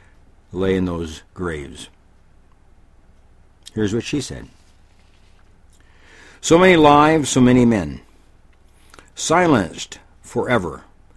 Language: English